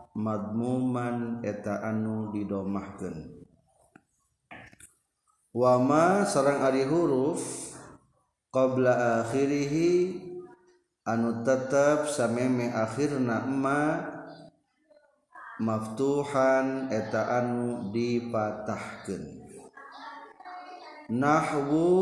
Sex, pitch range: male, 115-145 Hz